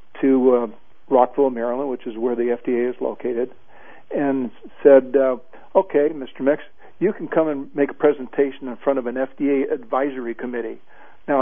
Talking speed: 170 wpm